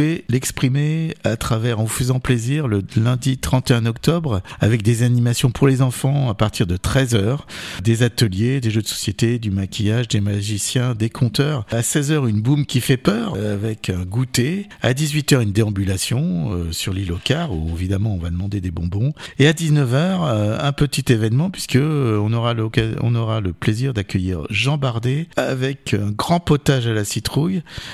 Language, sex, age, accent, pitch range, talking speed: French, male, 50-69, French, 105-140 Hz, 180 wpm